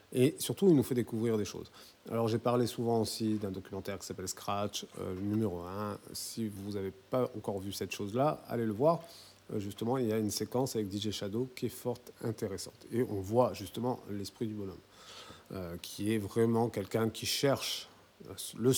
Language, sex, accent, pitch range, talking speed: French, male, French, 100-120 Hz, 200 wpm